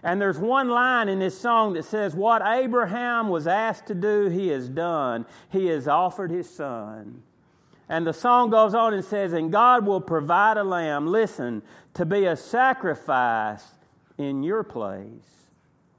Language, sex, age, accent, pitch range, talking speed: English, male, 50-69, American, 160-215 Hz, 165 wpm